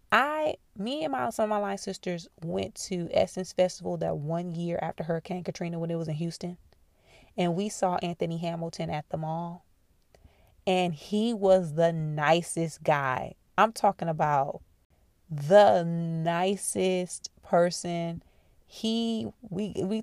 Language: English